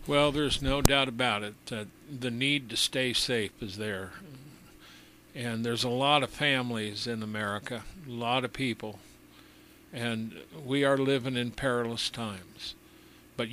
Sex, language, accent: male, English, American